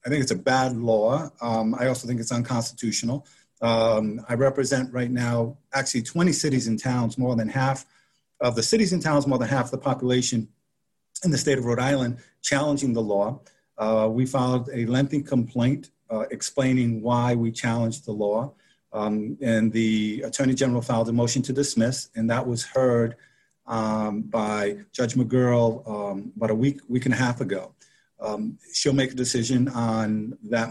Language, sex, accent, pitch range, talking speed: English, male, American, 115-130 Hz, 175 wpm